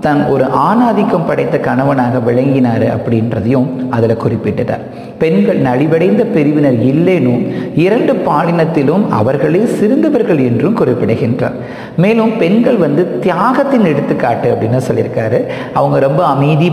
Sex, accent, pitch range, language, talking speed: male, native, 125-195 Hz, Tamil, 105 wpm